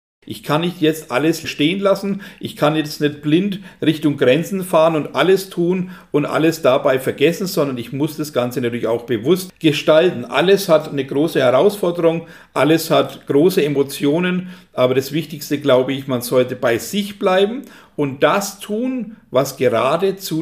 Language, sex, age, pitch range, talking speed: German, male, 50-69, 140-175 Hz, 165 wpm